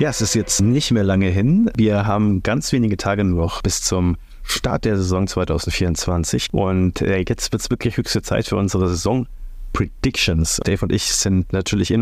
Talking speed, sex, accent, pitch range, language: 185 wpm, male, German, 90-115 Hz, German